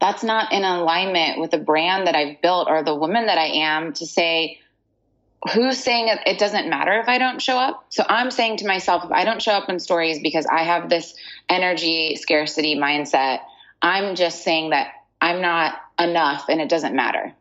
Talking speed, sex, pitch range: 200 wpm, female, 155-190 Hz